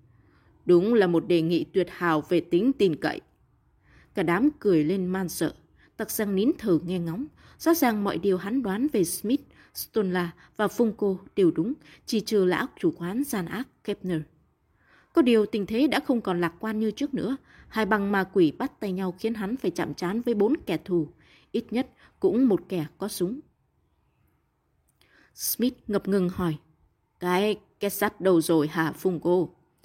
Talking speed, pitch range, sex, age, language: 180 wpm, 170-220 Hz, female, 20-39, Vietnamese